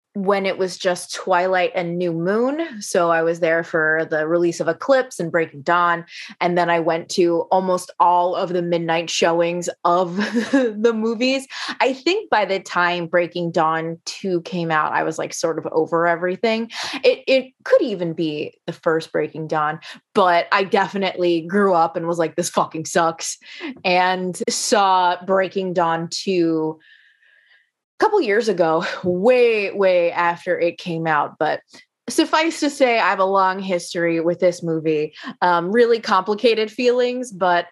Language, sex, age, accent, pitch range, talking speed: English, female, 20-39, American, 170-210 Hz, 165 wpm